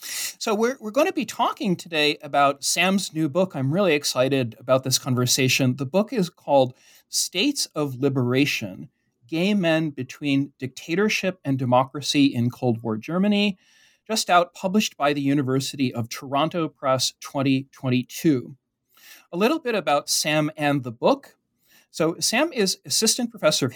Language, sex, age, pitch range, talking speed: English, male, 40-59, 130-185 Hz, 150 wpm